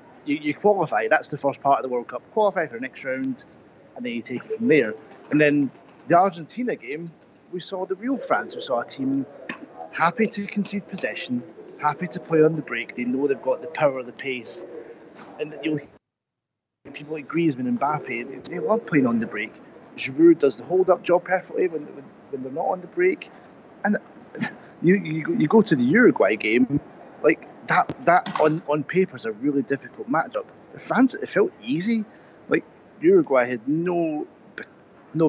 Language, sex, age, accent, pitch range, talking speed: English, male, 30-49, British, 140-215 Hz, 190 wpm